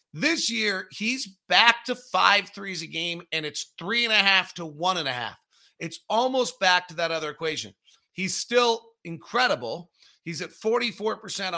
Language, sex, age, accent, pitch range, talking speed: English, male, 40-59, American, 140-190 Hz, 170 wpm